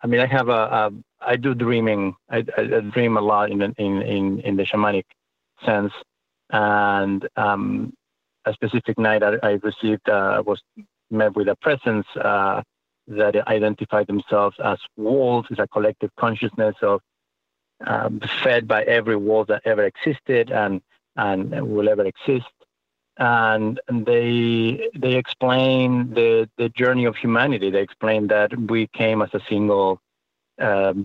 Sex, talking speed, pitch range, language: male, 150 wpm, 100-115 Hz, English